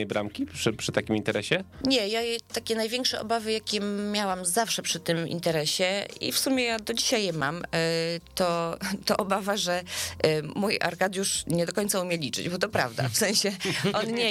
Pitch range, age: 145-185 Hz, 30-49